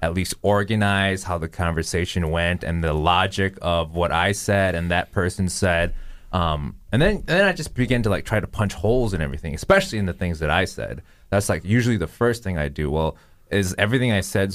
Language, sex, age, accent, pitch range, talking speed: English, male, 20-39, American, 85-110 Hz, 225 wpm